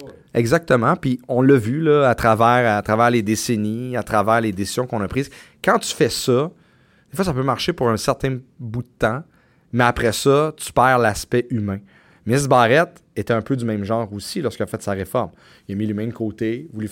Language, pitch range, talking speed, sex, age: French, 100-120 Hz, 215 wpm, male, 30-49